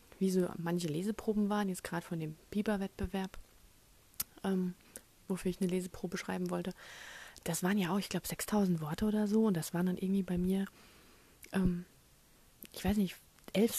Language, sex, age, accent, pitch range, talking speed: German, female, 30-49, German, 175-205 Hz, 175 wpm